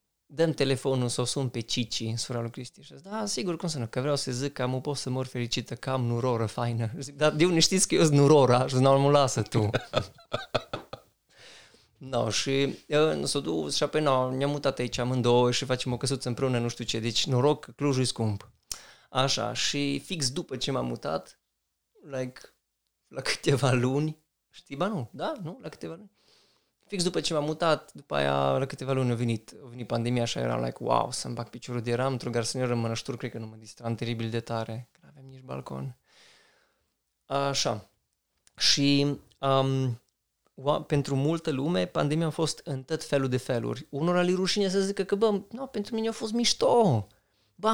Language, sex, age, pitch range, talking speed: Romanian, male, 20-39, 120-165 Hz, 205 wpm